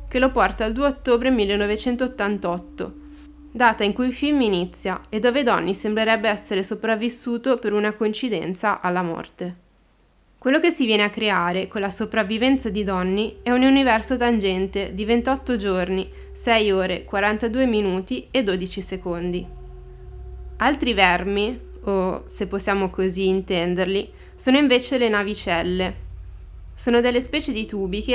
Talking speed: 140 wpm